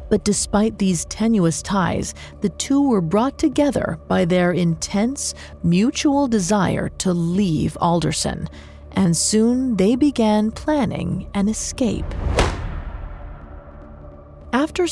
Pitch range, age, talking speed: 155-220 Hz, 40-59, 105 wpm